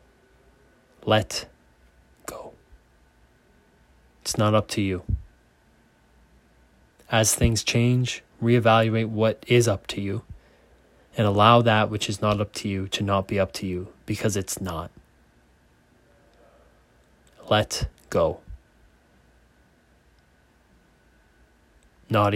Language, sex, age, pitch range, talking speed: English, male, 20-39, 65-105 Hz, 100 wpm